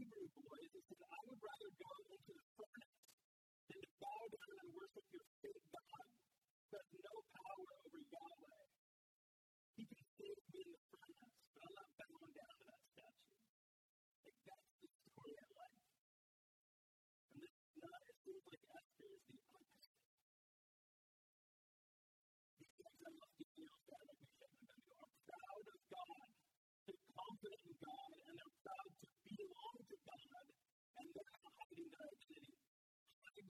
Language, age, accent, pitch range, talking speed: English, 40-59, American, 245-380 Hz, 150 wpm